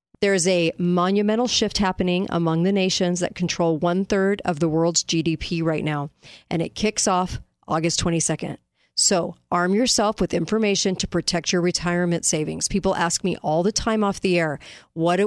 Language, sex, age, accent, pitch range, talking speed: English, female, 40-59, American, 170-200 Hz, 175 wpm